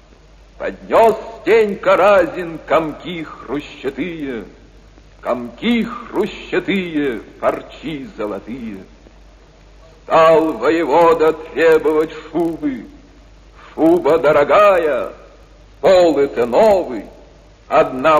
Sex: male